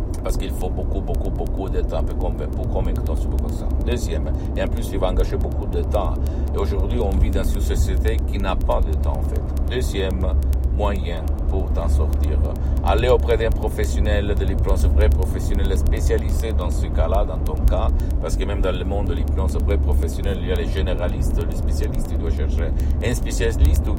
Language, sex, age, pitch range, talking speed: Italian, male, 50-69, 70-85 Hz, 205 wpm